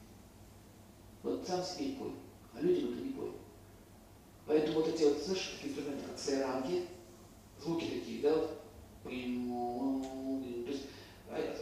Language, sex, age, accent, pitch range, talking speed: Russian, male, 40-59, native, 130-200 Hz, 110 wpm